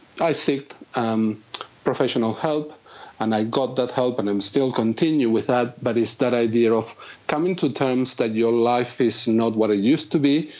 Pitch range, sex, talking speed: 115-135 Hz, male, 195 wpm